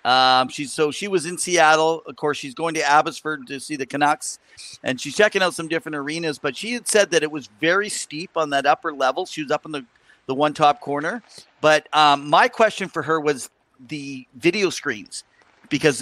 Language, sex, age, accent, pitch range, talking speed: English, male, 40-59, American, 145-190 Hz, 215 wpm